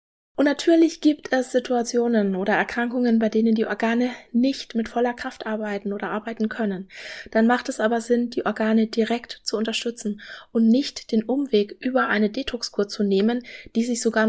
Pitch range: 210-245 Hz